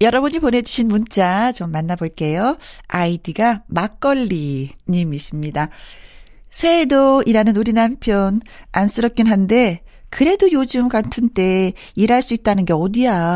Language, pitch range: Korean, 170-225 Hz